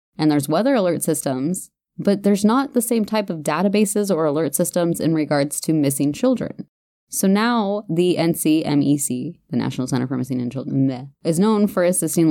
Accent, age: American, 20-39